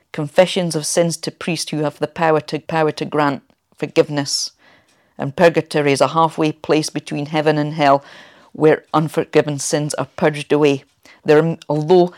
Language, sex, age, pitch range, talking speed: English, female, 50-69, 150-175 Hz, 155 wpm